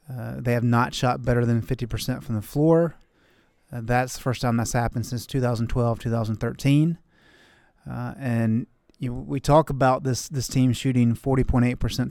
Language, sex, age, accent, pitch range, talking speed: English, male, 30-49, American, 120-145 Hz, 155 wpm